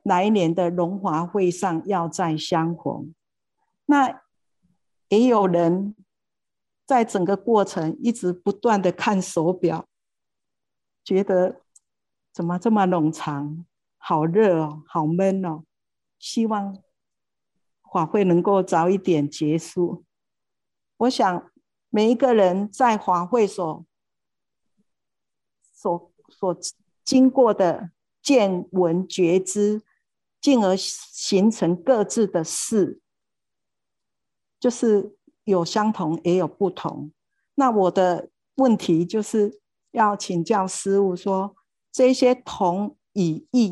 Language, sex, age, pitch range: Chinese, female, 50-69, 175-215 Hz